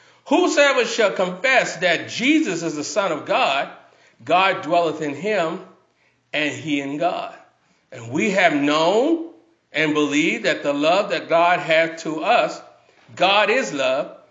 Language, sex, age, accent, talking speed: English, male, 50-69, American, 145 wpm